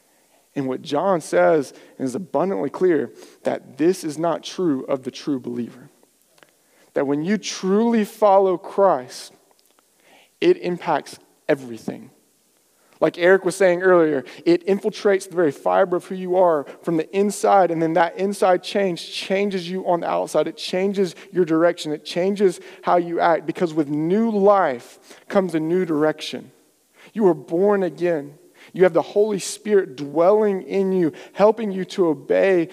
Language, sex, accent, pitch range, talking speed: English, male, American, 160-195 Hz, 155 wpm